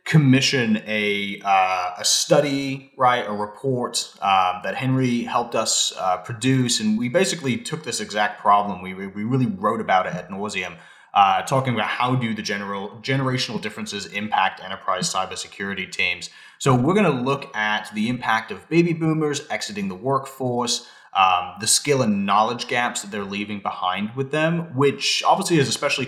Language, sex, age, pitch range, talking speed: English, male, 30-49, 105-135 Hz, 170 wpm